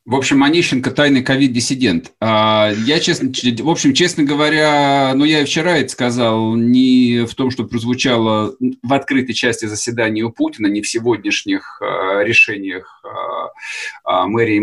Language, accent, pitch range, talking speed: Russian, native, 105-135 Hz, 145 wpm